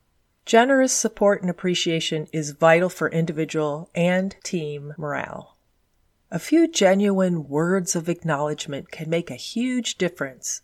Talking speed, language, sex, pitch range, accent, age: 125 wpm, English, female, 150-195 Hz, American, 40-59